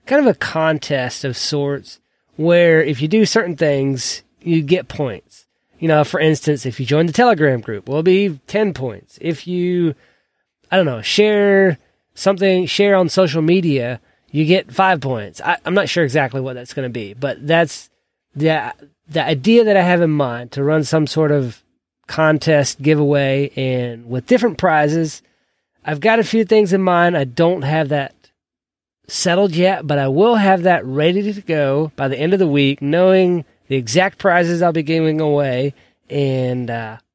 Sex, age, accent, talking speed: male, 30-49, American, 180 wpm